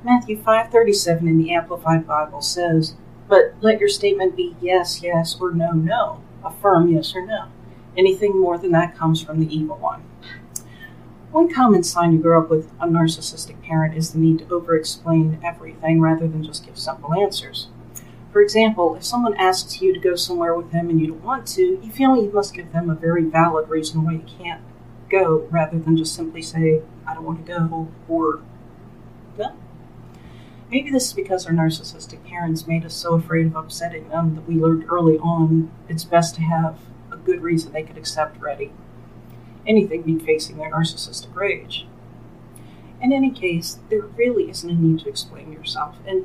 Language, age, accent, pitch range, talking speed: English, 50-69, American, 160-190 Hz, 185 wpm